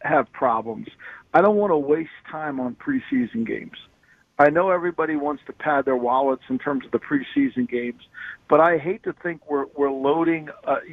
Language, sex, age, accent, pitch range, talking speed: English, male, 50-69, American, 130-155 Hz, 185 wpm